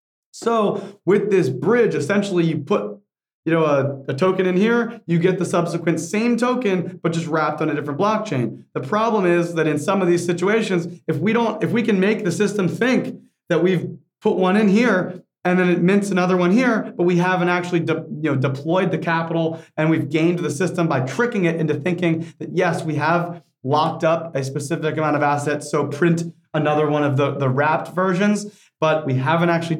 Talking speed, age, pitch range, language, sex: 205 wpm, 30-49, 150-185 Hz, English, male